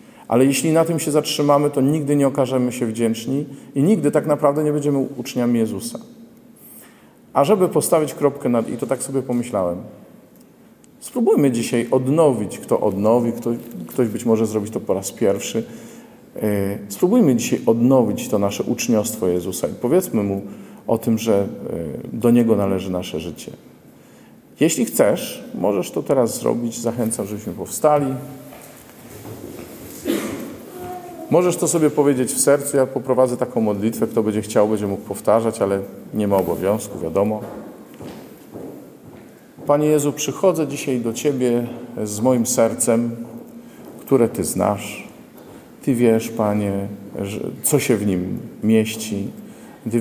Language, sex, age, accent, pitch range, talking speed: Polish, male, 40-59, native, 110-140 Hz, 135 wpm